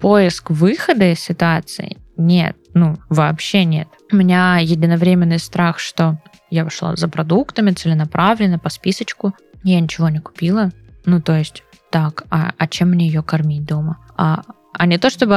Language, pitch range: Russian, 155-175 Hz